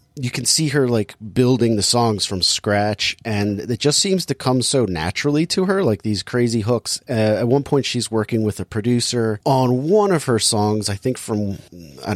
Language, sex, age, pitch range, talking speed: English, male, 30-49, 100-125 Hz, 205 wpm